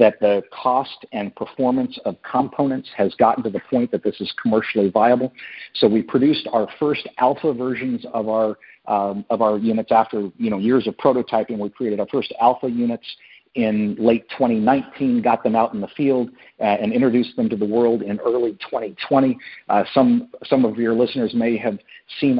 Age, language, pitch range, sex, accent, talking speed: 50-69, English, 105-125 Hz, male, American, 190 wpm